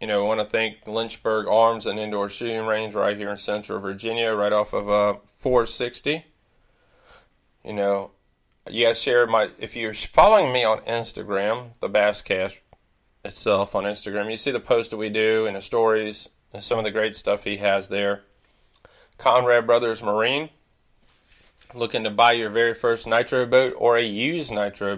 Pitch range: 100-120 Hz